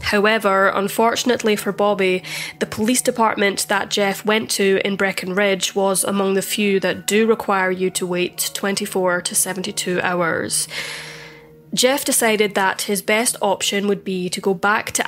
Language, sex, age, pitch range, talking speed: English, female, 20-39, 185-215 Hz, 155 wpm